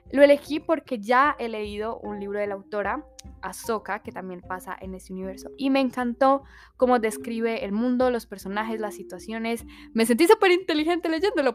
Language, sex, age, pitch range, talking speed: Spanish, female, 10-29, 205-290 Hz, 175 wpm